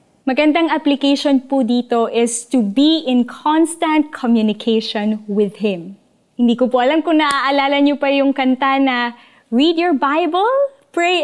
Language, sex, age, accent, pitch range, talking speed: Filipino, female, 20-39, native, 215-295 Hz, 145 wpm